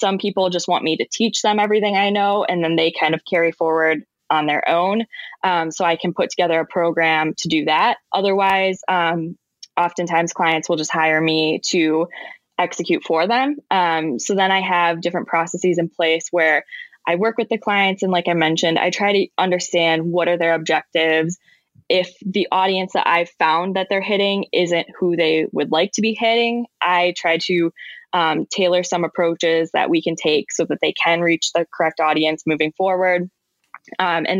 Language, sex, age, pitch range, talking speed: English, female, 20-39, 165-195 Hz, 195 wpm